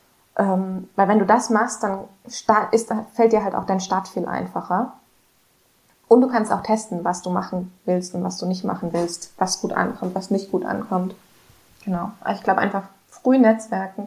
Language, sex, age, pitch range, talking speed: German, female, 20-39, 185-220 Hz, 180 wpm